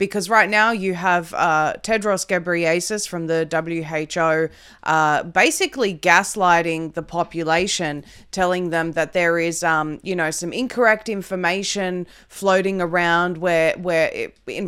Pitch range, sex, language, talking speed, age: 165-195 Hz, female, English, 135 wpm, 20-39